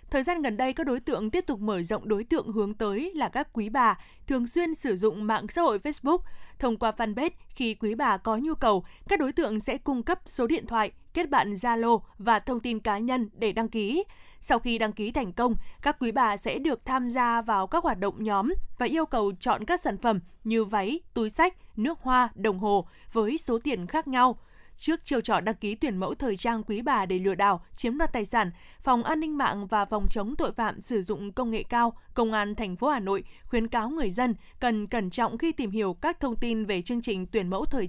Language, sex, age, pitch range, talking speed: Vietnamese, female, 20-39, 210-260 Hz, 240 wpm